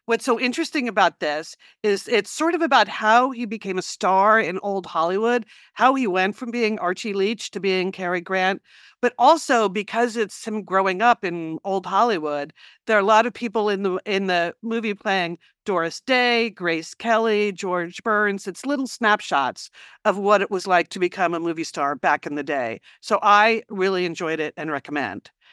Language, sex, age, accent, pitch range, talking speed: English, female, 50-69, American, 185-230 Hz, 190 wpm